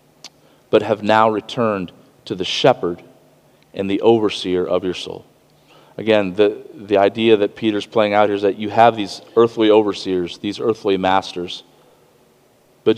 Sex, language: male, English